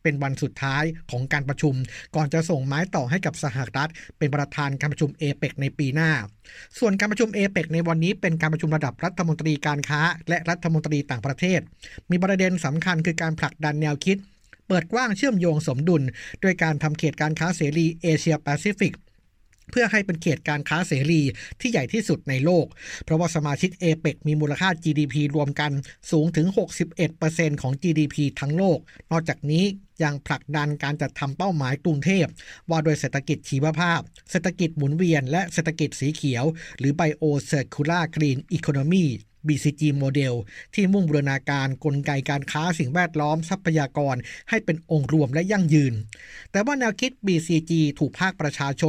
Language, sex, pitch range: Thai, male, 145-175 Hz